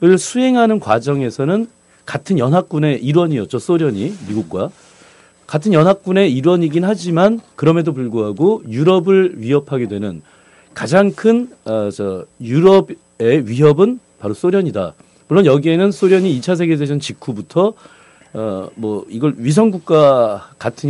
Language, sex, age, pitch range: Korean, male, 40-59, 120-190 Hz